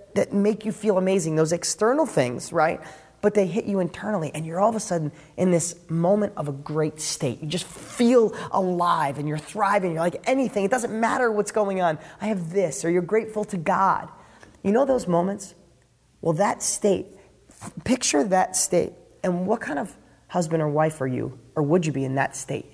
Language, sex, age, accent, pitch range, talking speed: English, male, 20-39, American, 155-215 Hz, 205 wpm